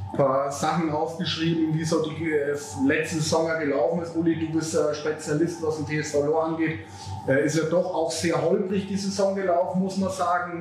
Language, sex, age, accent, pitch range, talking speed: German, male, 30-49, German, 150-175 Hz, 185 wpm